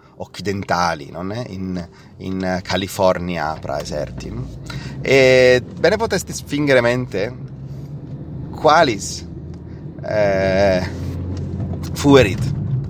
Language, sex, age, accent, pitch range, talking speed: Italian, male, 30-49, native, 110-140 Hz, 75 wpm